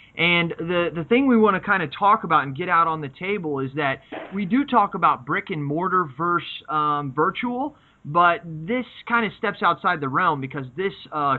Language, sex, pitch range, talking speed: English, male, 150-195 Hz, 210 wpm